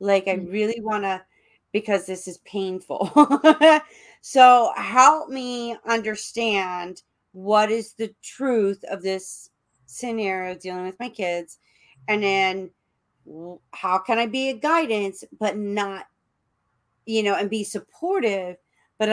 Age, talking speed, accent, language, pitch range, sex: 40-59, 125 wpm, American, English, 165-215 Hz, female